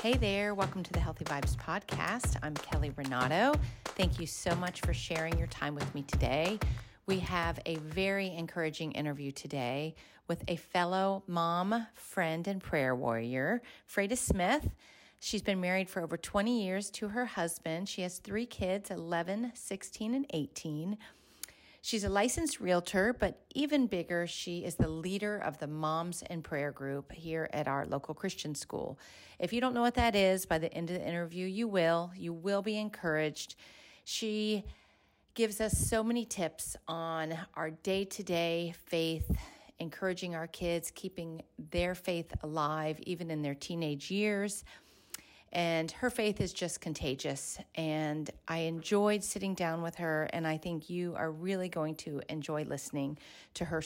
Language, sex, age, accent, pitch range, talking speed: English, female, 40-59, American, 155-195 Hz, 165 wpm